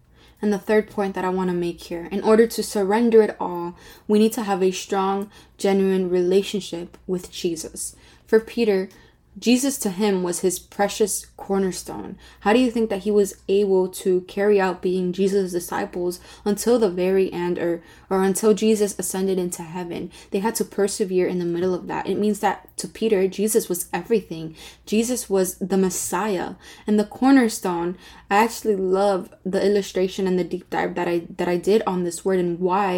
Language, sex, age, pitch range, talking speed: English, female, 20-39, 180-215 Hz, 185 wpm